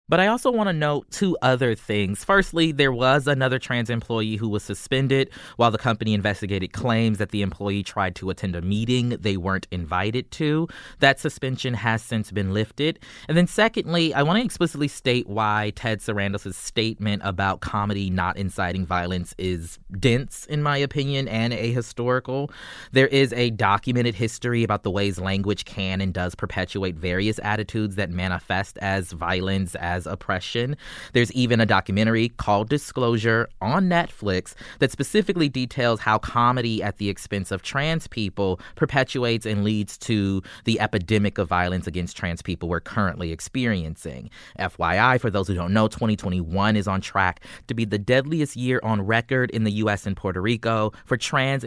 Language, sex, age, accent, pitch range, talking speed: English, male, 20-39, American, 95-125 Hz, 170 wpm